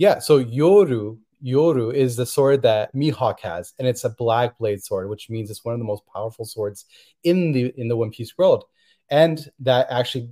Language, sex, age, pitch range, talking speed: English, male, 30-49, 115-145 Hz, 205 wpm